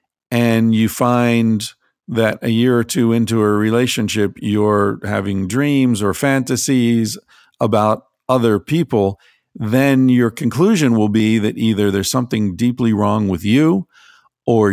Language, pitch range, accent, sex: English, 100-125 Hz, American, male